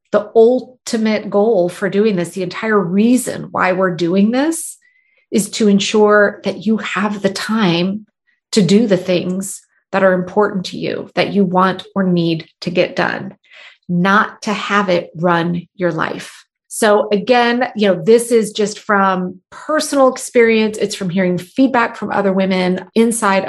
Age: 30-49